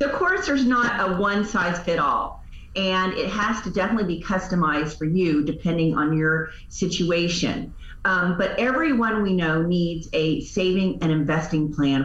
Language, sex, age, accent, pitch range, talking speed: English, female, 40-59, American, 155-195 Hz, 165 wpm